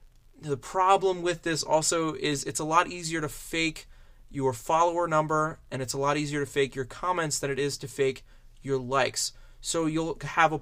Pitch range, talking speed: 135-170 Hz, 200 wpm